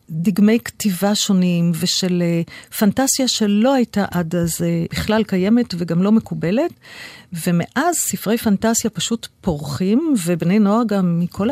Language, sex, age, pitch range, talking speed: Hebrew, female, 50-69, 175-220 Hz, 130 wpm